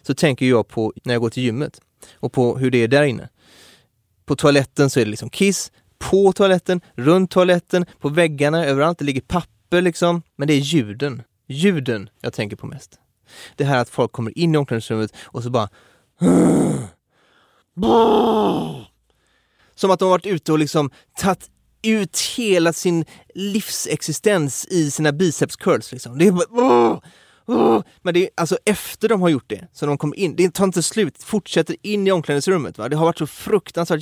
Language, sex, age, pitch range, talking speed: English, male, 30-49, 130-180 Hz, 180 wpm